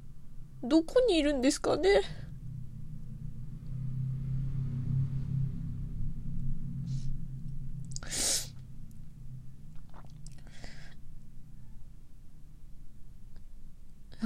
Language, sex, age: Japanese, female, 20-39